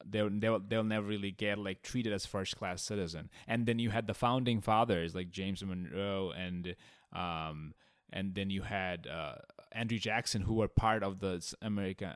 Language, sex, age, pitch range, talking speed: English, male, 20-39, 95-115 Hz, 175 wpm